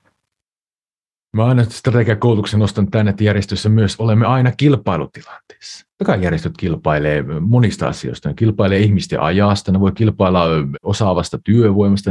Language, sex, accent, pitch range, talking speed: Finnish, male, native, 95-115 Hz, 125 wpm